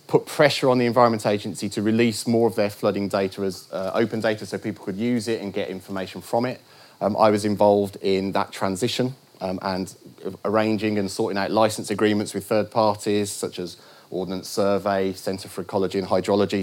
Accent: British